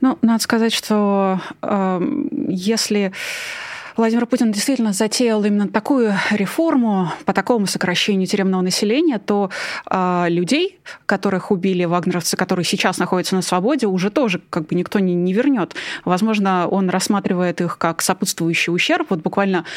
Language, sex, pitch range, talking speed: Russian, female, 180-225 Hz, 140 wpm